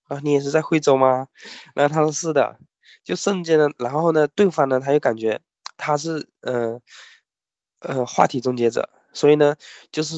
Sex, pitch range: male, 120-150 Hz